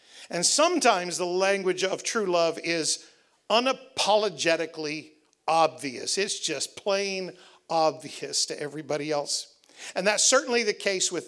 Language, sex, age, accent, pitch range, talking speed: English, male, 50-69, American, 180-240 Hz, 120 wpm